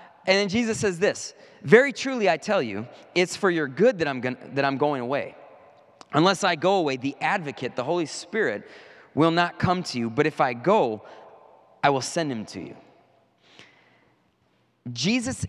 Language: English